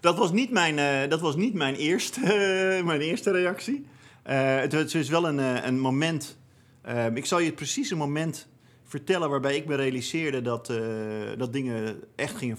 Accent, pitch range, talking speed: Dutch, 120-160 Hz, 190 wpm